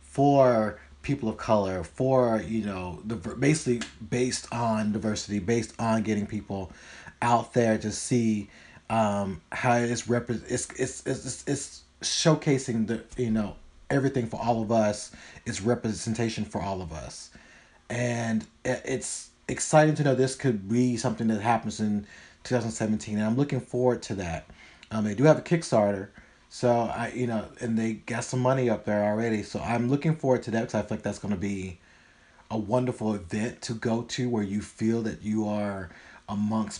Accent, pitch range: American, 105-125 Hz